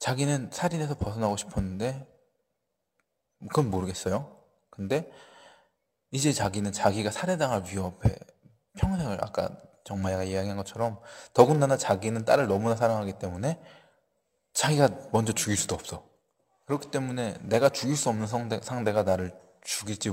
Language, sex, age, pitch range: Korean, male, 20-39, 95-125 Hz